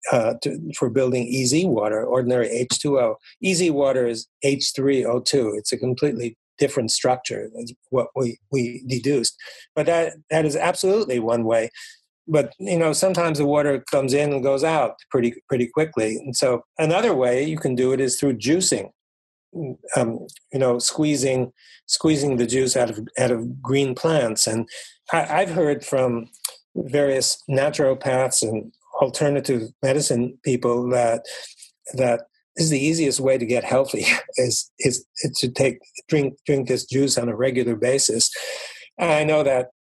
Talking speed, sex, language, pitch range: 155 wpm, male, English, 120-145 Hz